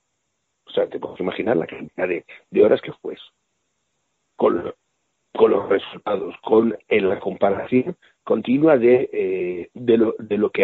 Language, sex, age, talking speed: Spanish, male, 60-79, 165 wpm